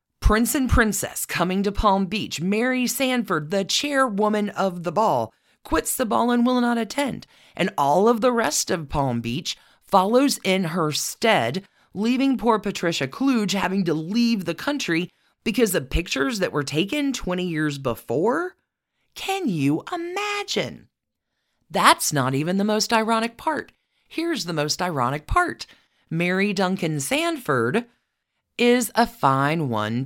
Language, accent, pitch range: English, American, 170-250 Hz